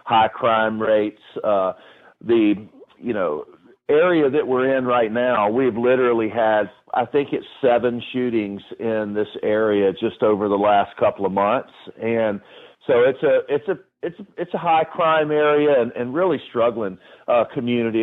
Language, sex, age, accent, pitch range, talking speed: English, male, 50-69, American, 105-130 Hz, 160 wpm